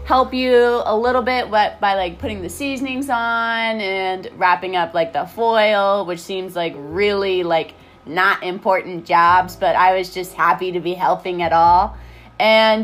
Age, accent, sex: 20-39, American, female